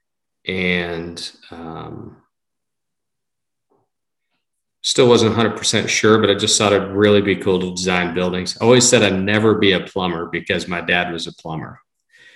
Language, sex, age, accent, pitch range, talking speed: English, male, 40-59, American, 85-110 Hz, 150 wpm